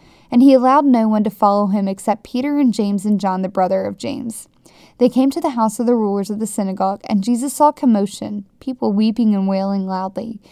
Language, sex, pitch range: English, female, 205-250 Hz